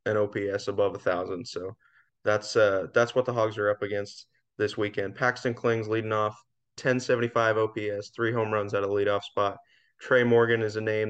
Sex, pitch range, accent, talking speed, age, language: male, 105-120 Hz, American, 200 wpm, 20-39, English